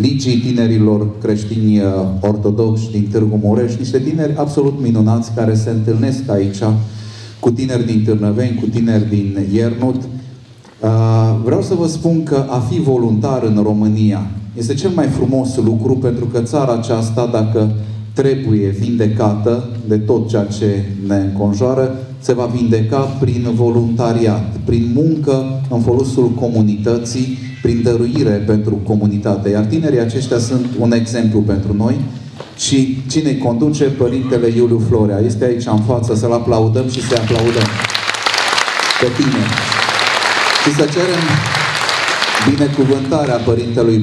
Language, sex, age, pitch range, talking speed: Romanian, male, 30-49, 110-130 Hz, 130 wpm